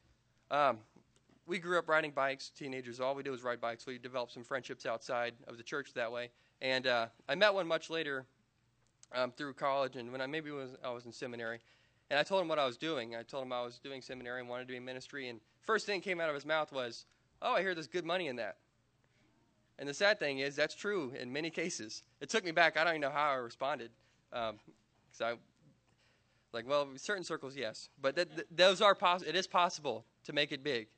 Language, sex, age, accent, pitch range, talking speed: English, male, 20-39, American, 120-165 Hz, 240 wpm